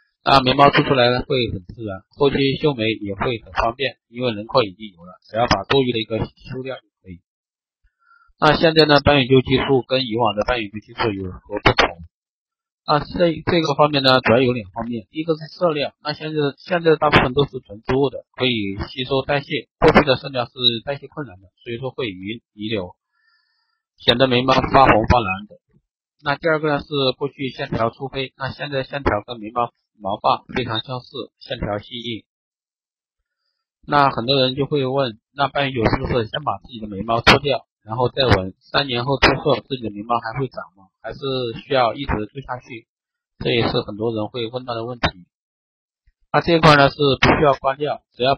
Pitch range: 115-145 Hz